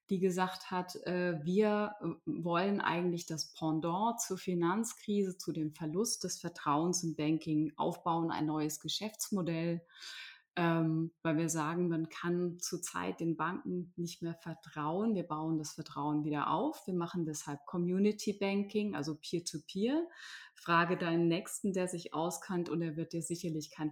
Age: 30-49